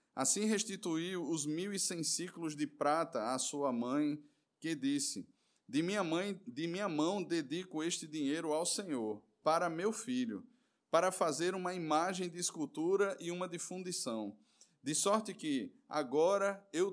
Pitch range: 145-190 Hz